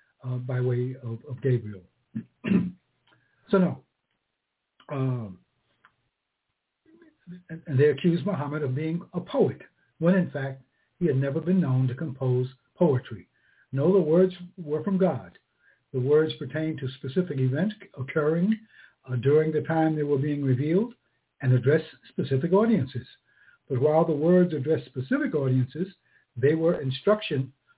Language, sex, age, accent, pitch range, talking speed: English, male, 60-79, American, 130-170 Hz, 140 wpm